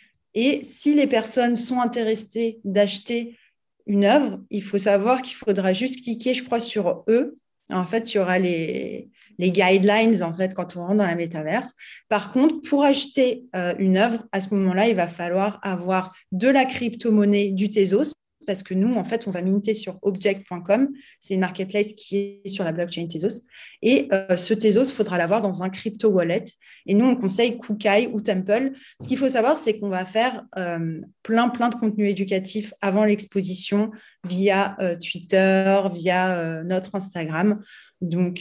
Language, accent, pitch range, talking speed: French, French, 185-225 Hz, 180 wpm